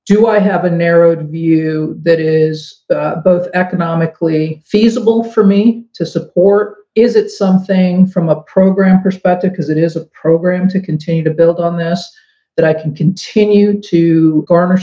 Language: English